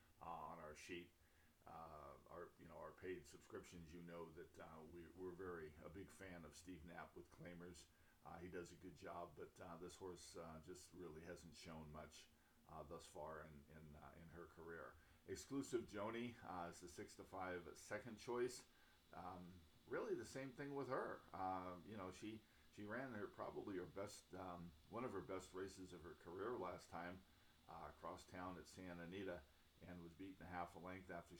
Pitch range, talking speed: 85-95 Hz, 195 wpm